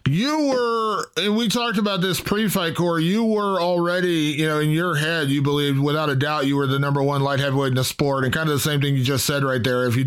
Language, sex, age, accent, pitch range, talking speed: English, male, 20-39, American, 140-175 Hz, 270 wpm